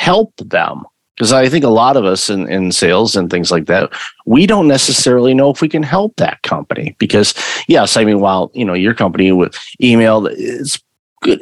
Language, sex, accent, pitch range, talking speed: English, male, American, 95-120 Hz, 205 wpm